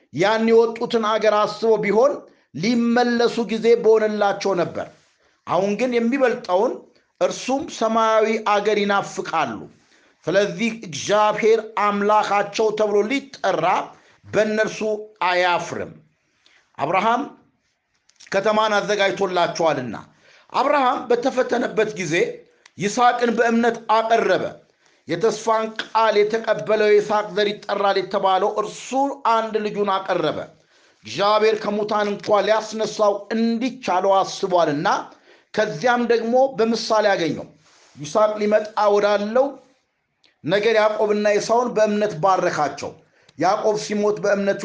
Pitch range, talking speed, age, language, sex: 200-230 Hz, 85 wpm, 50-69, Amharic, male